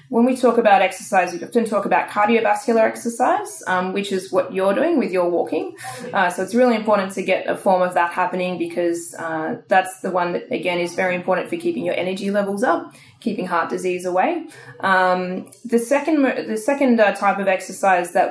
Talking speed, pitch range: 205 wpm, 175-220 Hz